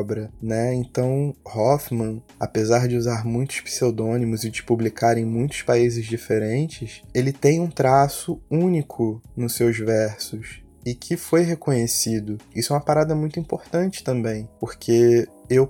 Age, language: 20-39, Portuguese